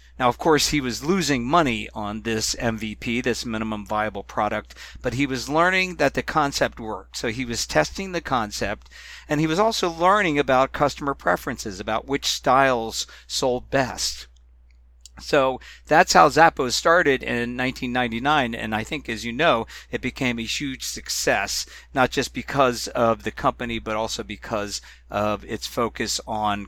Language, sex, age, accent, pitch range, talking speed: English, male, 50-69, American, 105-130 Hz, 160 wpm